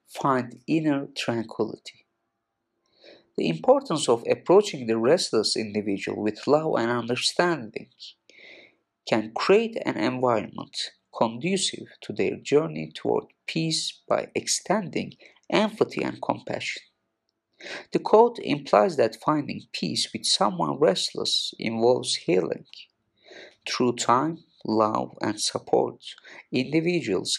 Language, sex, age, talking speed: English, male, 50-69, 100 wpm